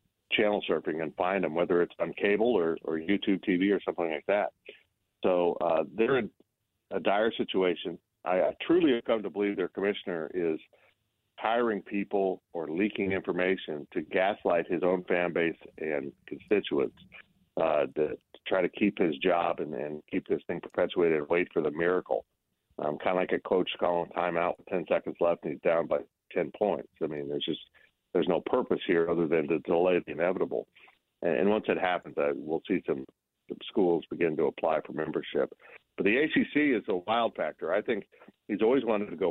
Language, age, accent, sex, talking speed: English, 50-69, American, male, 190 wpm